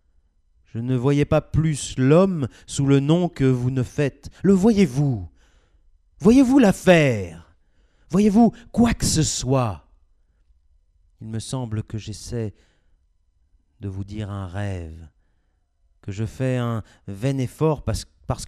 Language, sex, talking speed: French, male, 130 wpm